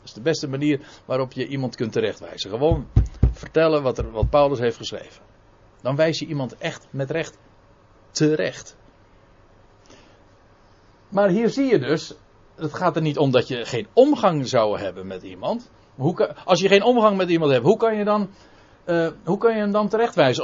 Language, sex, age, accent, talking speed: Dutch, male, 50-69, Dutch, 190 wpm